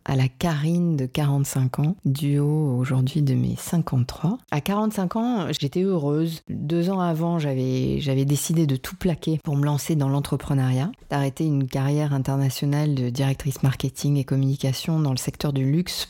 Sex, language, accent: female, French, French